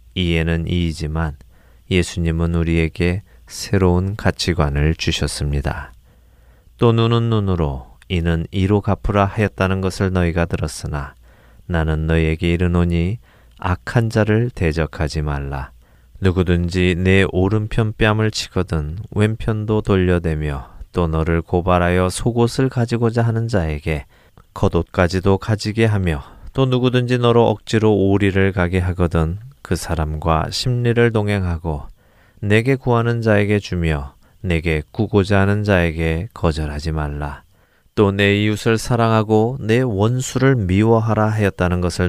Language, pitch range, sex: Korean, 80-105 Hz, male